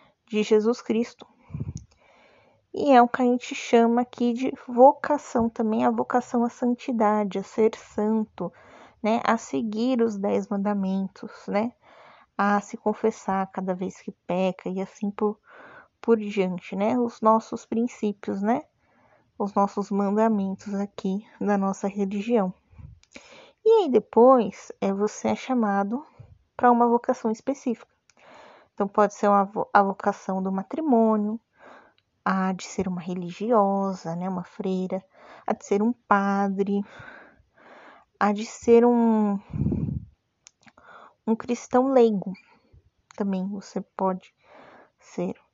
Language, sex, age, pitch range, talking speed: Portuguese, female, 20-39, 200-235 Hz, 125 wpm